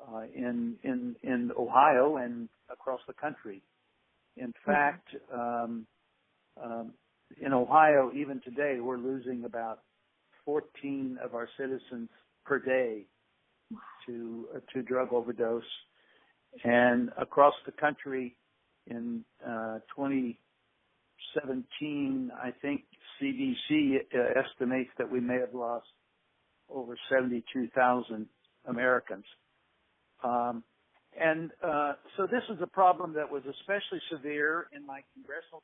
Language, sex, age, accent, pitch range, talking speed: English, male, 60-79, American, 125-150 Hz, 110 wpm